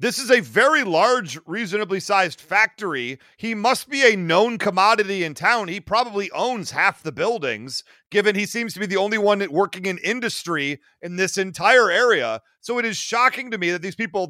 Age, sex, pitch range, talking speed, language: 40-59, male, 180-225 Hz, 195 wpm, English